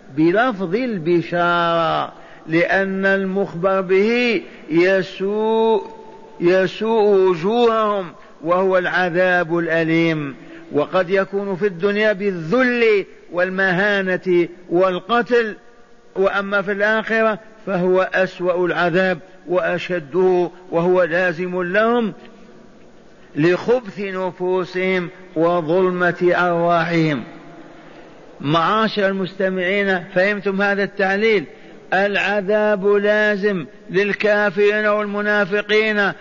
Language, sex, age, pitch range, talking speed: Arabic, male, 50-69, 180-215 Hz, 70 wpm